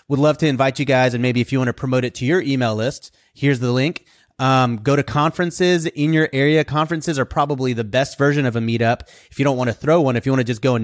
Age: 30-49